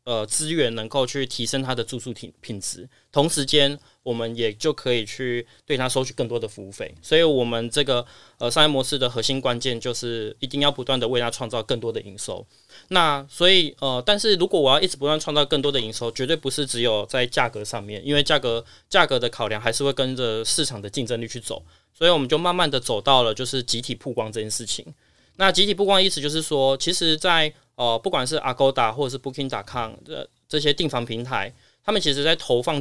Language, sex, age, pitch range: Chinese, male, 20-39, 120-150 Hz